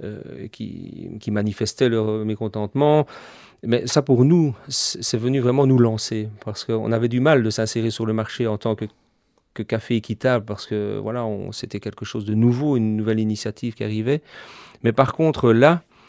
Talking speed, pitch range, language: 180 wpm, 110-135 Hz, French